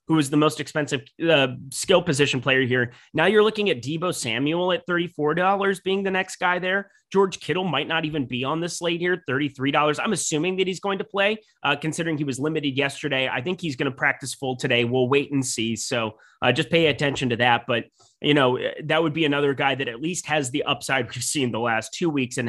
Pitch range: 130-170 Hz